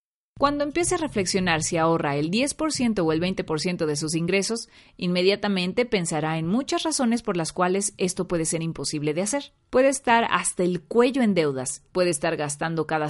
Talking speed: 180 wpm